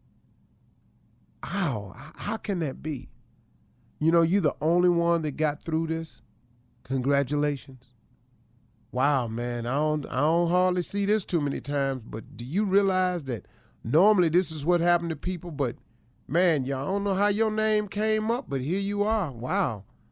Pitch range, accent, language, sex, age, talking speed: 120-180 Hz, American, English, male, 40-59, 165 wpm